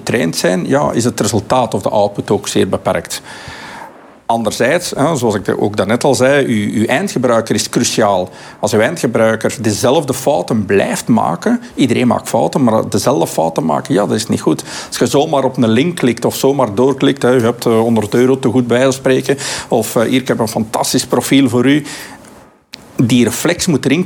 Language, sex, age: Dutch, male, 50-69